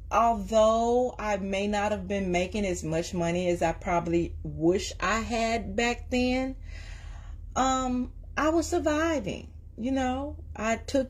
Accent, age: American, 30-49